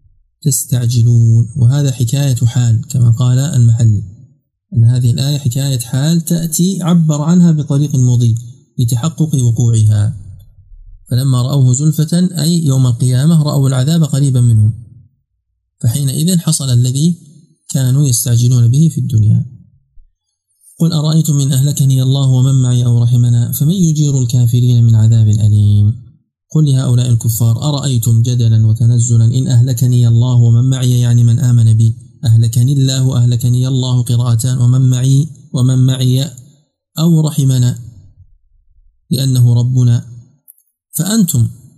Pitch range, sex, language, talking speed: 120-155 Hz, male, Arabic, 120 wpm